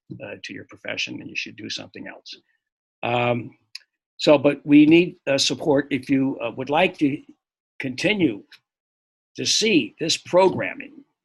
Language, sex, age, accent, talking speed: English, male, 60-79, American, 150 wpm